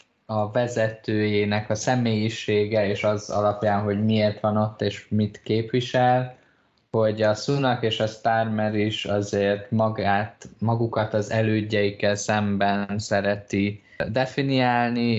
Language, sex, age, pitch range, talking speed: Hungarian, male, 20-39, 95-110 Hz, 115 wpm